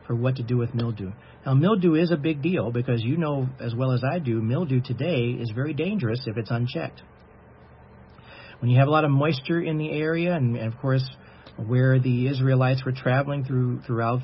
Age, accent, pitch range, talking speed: 40-59, American, 115-140 Hz, 205 wpm